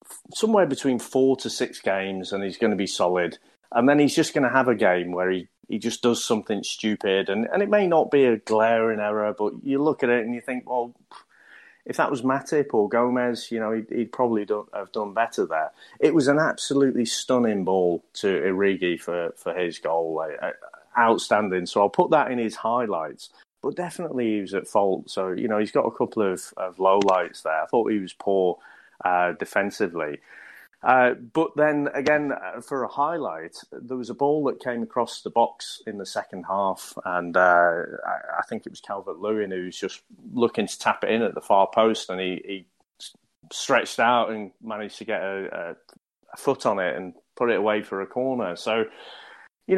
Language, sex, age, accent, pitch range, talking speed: English, male, 30-49, British, 95-130 Hz, 205 wpm